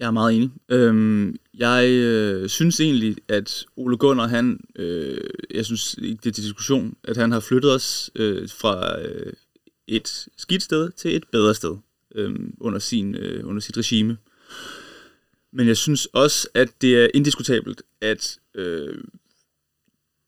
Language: Danish